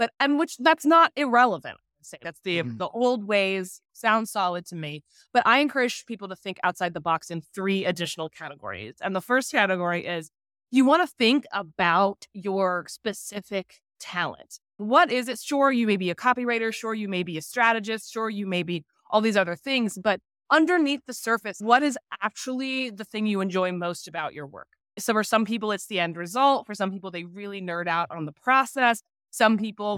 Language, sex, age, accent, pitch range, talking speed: English, female, 20-39, American, 175-230 Hz, 195 wpm